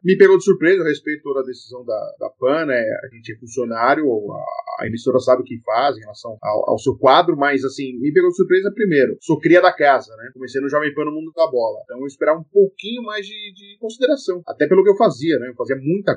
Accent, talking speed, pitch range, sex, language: Brazilian, 255 wpm, 145-200 Hz, male, Portuguese